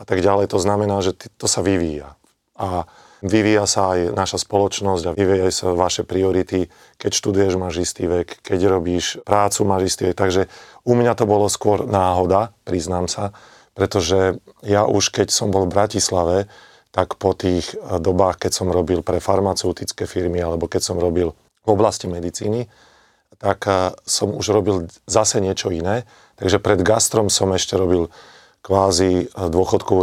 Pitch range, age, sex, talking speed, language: 90-100 Hz, 40-59, male, 150 wpm, Slovak